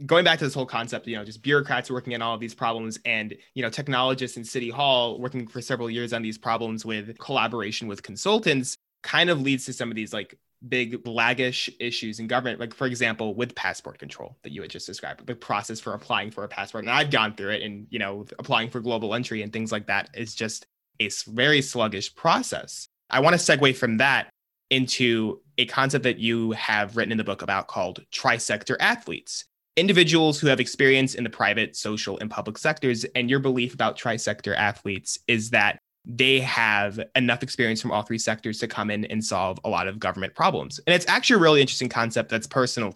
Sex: male